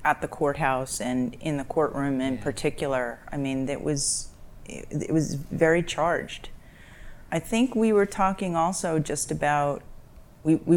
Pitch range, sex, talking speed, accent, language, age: 135-155 Hz, female, 140 wpm, American, English, 30-49